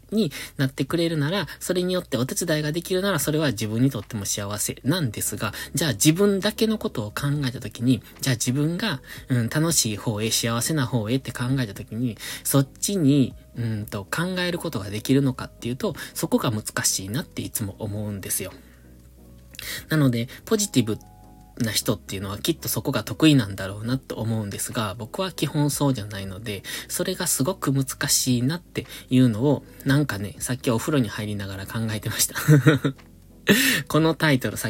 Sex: male